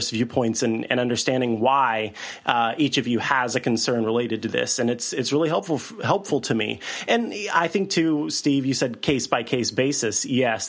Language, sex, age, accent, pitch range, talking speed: English, male, 30-49, American, 120-150 Hz, 190 wpm